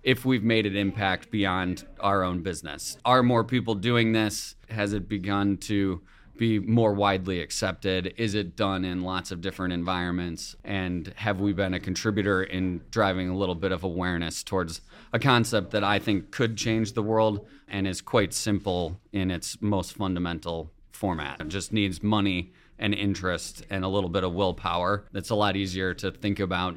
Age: 30-49